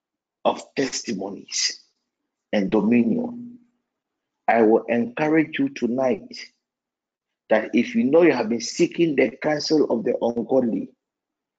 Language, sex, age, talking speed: English, male, 50-69, 115 wpm